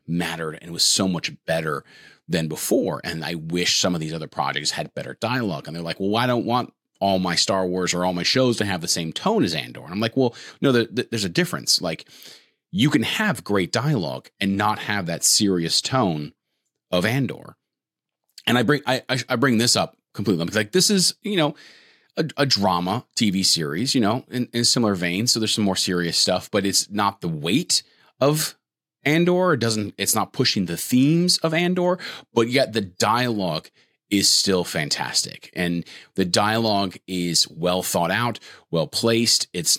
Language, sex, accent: English, male, American